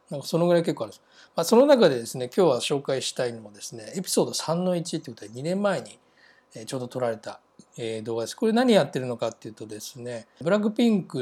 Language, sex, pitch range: Japanese, male, 120-190 Hz